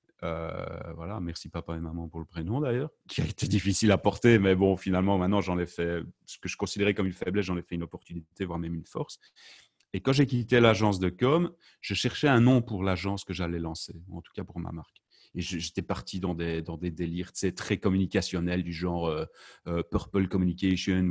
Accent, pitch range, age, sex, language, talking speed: French, 90-105 Hz, 30-49, male, French, 225 wpm